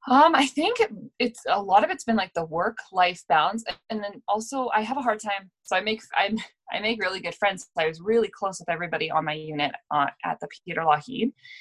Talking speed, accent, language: 235 wpm, American, English